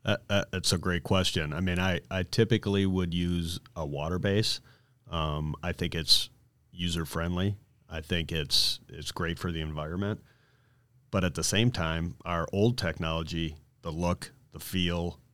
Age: 30-49